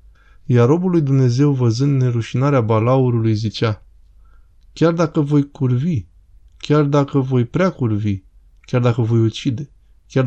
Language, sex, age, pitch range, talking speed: Romanian, male, 20-39, 110-140 Hz, 130 wpm